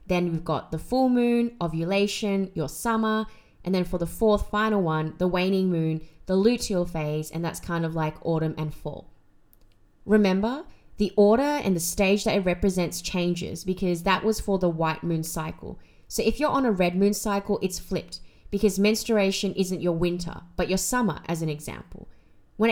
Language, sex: English, female